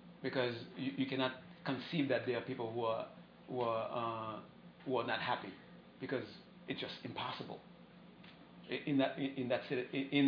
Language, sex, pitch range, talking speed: English, male, 120-140 Hz, 160 wpm